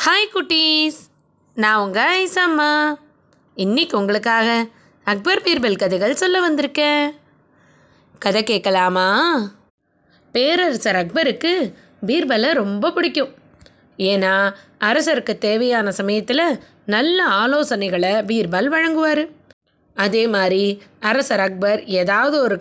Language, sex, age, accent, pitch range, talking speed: Tamil, female, 20-39, native, 200-285 Hz, 90 wpm